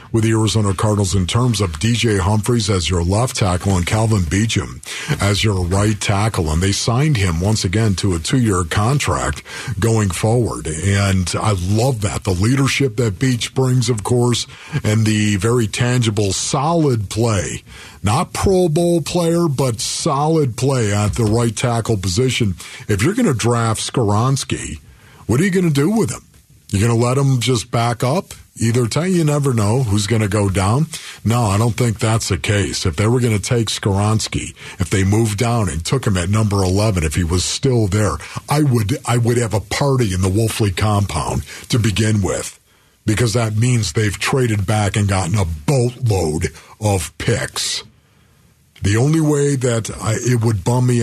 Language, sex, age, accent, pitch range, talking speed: English, male, 50-69, American, 100-125 Hz, 185 wpm